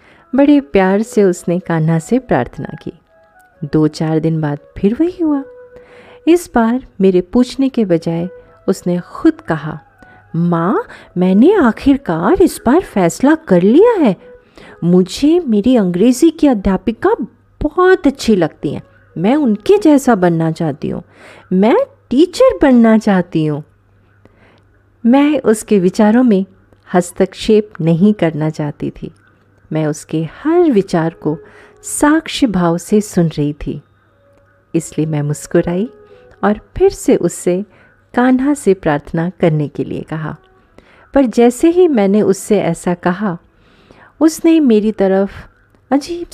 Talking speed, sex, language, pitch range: 125 wpm, female, Hindi, 160-265 Hz